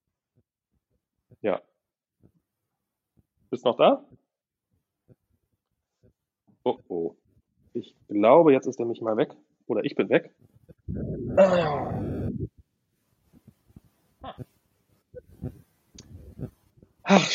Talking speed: 65 wpm